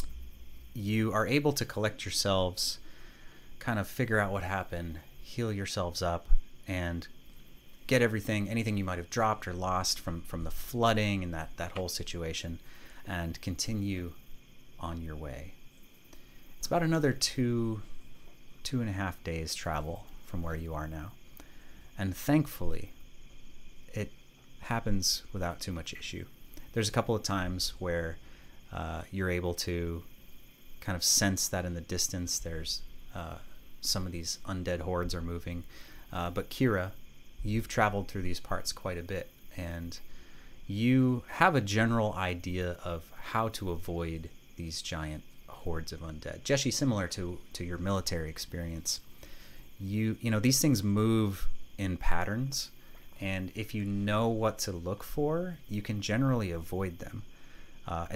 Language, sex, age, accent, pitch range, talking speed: English, male, 30-49, American, 80-105 Hz, 150 wpm